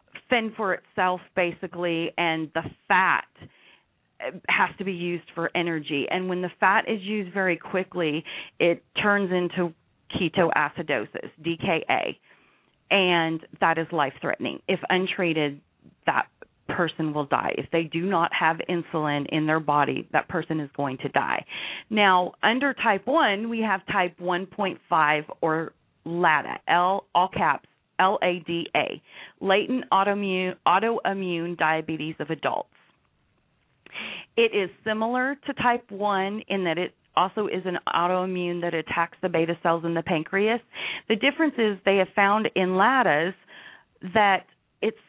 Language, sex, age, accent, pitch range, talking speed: English, female, 40-59, American, 165-200 Hz, 135 wpm